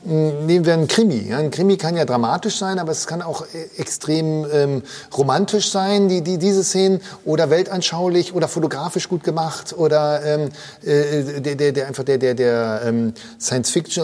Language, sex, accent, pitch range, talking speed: German, male, German, 130-180 Hz, 170 wpm